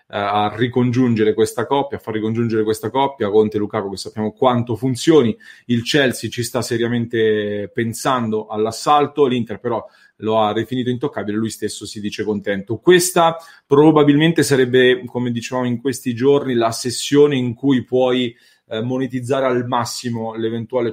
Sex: male